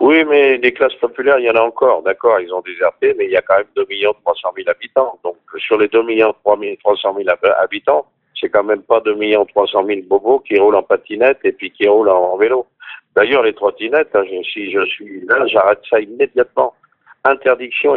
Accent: French